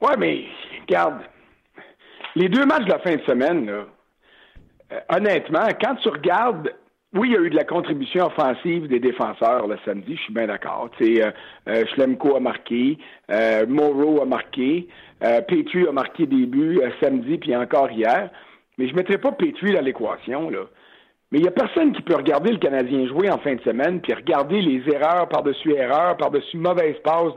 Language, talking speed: French, 195 wpm